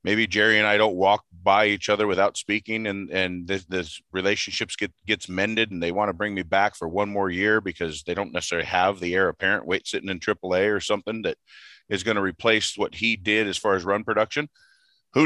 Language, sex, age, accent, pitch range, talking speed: English, male, 40-59, American, 100-120 Hz, 230 wpm